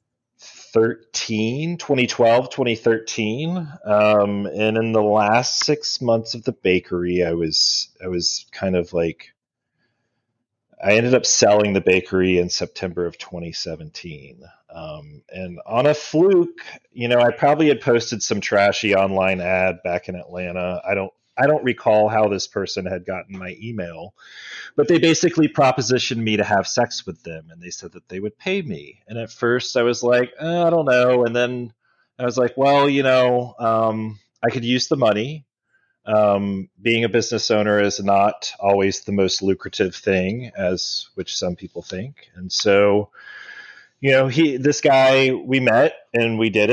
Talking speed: 170 wpm